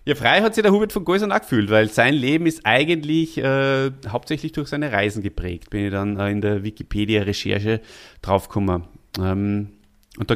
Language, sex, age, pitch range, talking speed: German, male, 30-49, 100-140 Hz, 185 wpm